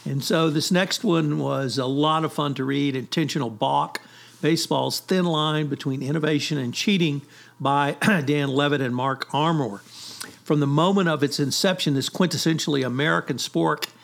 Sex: male